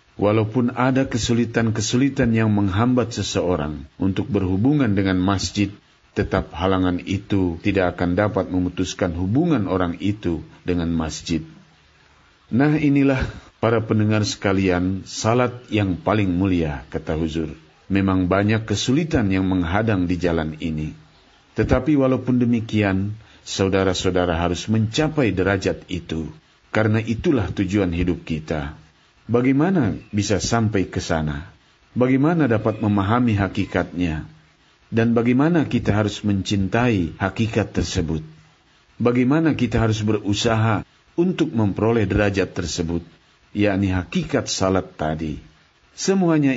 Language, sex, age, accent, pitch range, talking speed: Indonesian, male, 50-69, native, 90-115 Hz, 105 wpm